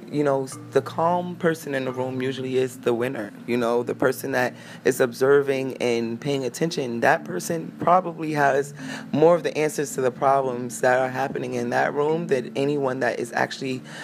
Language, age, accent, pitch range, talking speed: English, 20-39, American, 120-155 Hz, 190 wpm